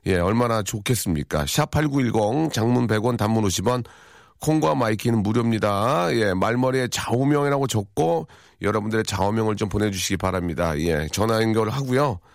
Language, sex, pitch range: Korean, male, 100-135 Hz